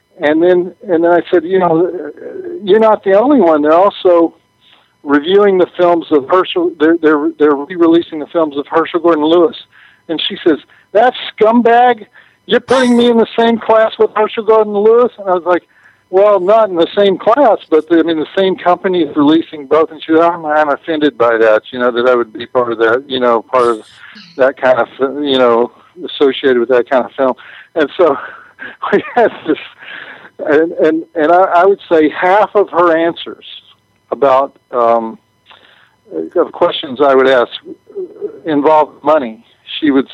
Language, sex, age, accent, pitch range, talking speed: English, male, 60-79, American, 135-195 Hz, 185 wpm